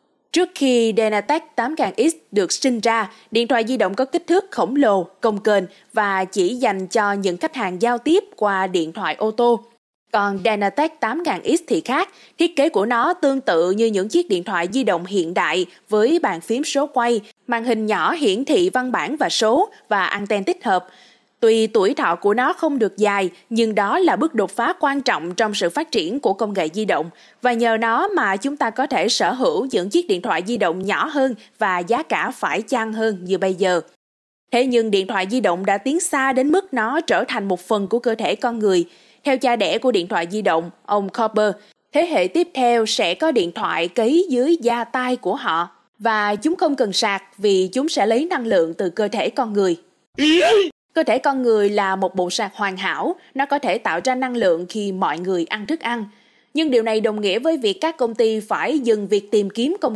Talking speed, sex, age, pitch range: 220 wpm, female, 20-39, 200-265 Hz